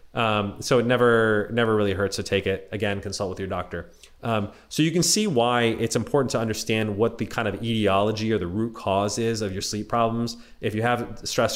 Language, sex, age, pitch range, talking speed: English, male, 30-49, 100-120 Hz, 225 wpm